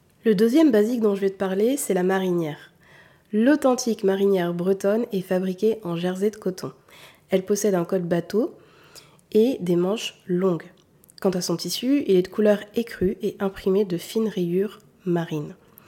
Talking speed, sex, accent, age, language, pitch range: 165 wpm, female, French, 20-39, French, 180-220 Hz